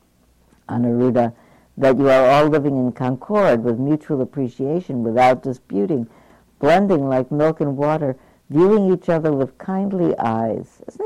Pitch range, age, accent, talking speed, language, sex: 115-155 Hz, 60-79, American, 135 wpm, English, female